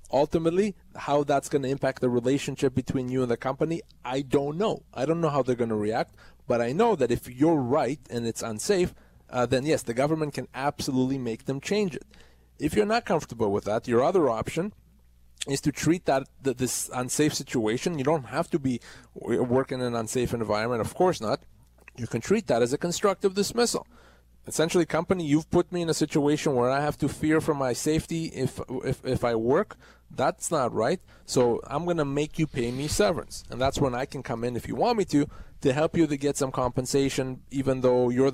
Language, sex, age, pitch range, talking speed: English, male, 30-49, 125-155 Hz, 215 wpm